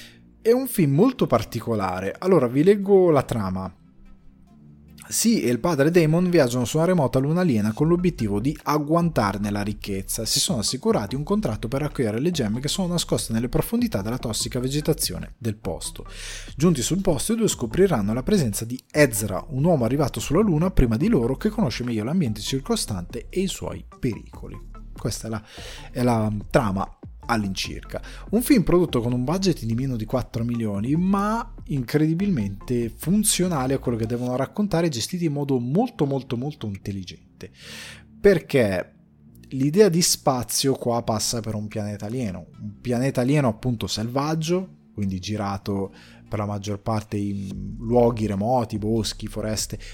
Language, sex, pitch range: Italian, male, 110-145 Hz